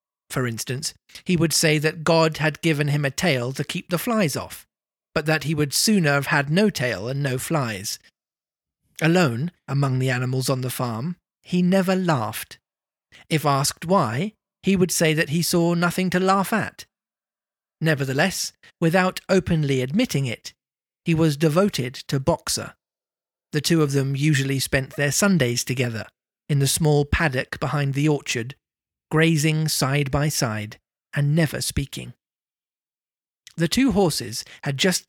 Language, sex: English, male